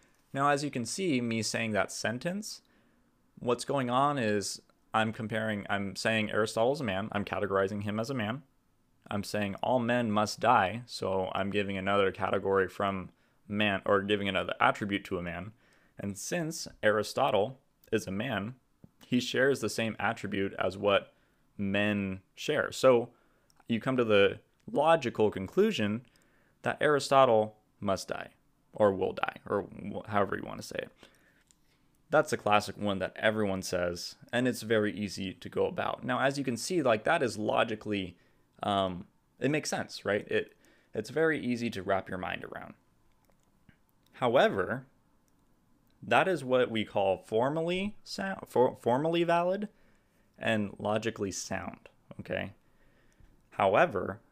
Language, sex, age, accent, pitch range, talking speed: English, male, 20-39, American, 100-125 Hz, 150 wpm